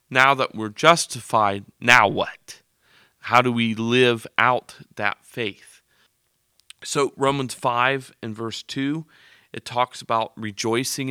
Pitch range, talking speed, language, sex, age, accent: 110-130 Hz, 125 wpm, English, male, 40-59, American